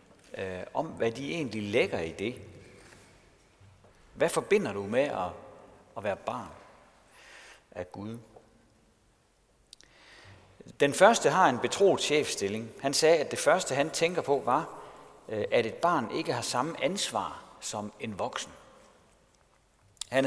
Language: Danish